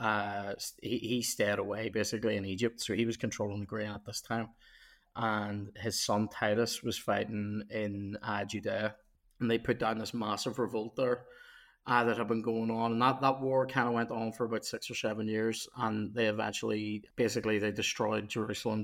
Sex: male